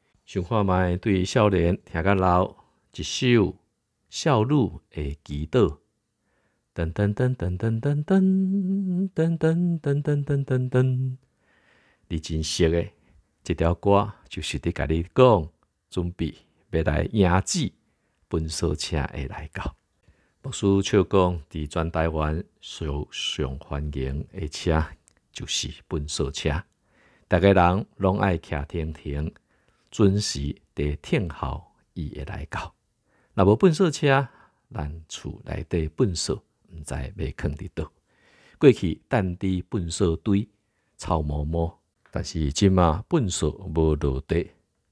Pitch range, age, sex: 75-105 Hz, 50-69, male